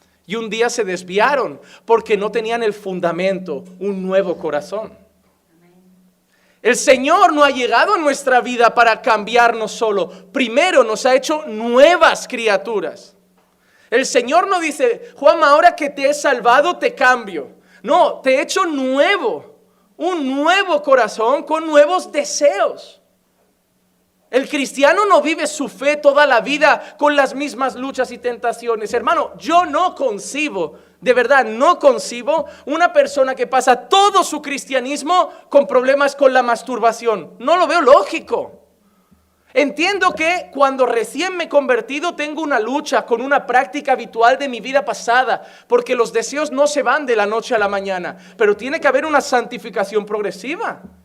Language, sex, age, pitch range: Spanish, male, 40-59, 225-295 Hz